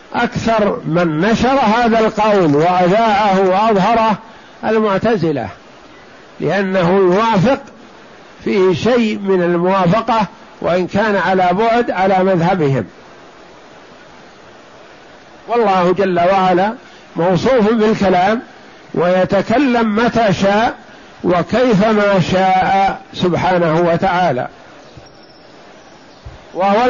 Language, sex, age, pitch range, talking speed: Arabic, male, 50-69, 180-225 Hz, 75 wpm